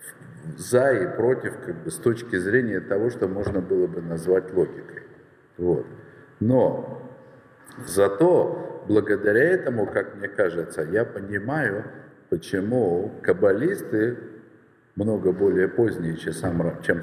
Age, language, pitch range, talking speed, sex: 50-69, Russian, 85-120 Hz, 110 wpm, male